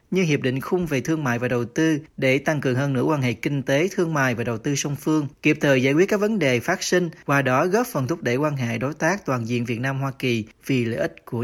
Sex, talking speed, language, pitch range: male, 290 wpm, Vietnamese, 130-165 Hz